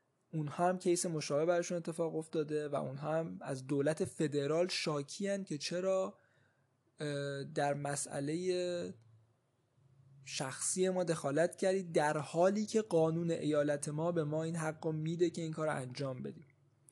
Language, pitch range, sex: Persian, 140-170 Hz, male